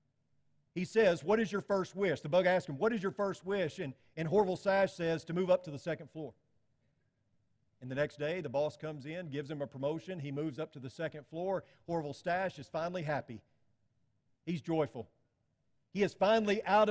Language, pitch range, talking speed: English, 135-185 Hz, 205 wpm